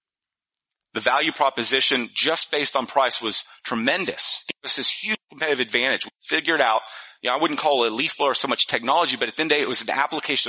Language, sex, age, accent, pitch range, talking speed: English, male, 30-49, American, 120-145 Hz, 230 wpm